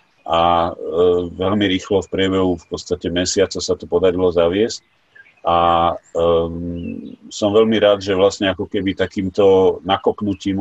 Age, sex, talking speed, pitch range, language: 40-59, male, 130 wpm, 90-100 Hz, Slovak